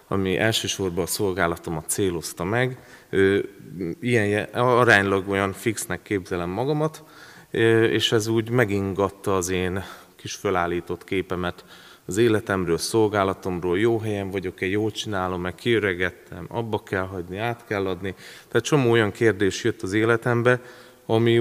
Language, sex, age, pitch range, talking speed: Hungarian, male, 30-49, 95-120 Hz, 125 wpm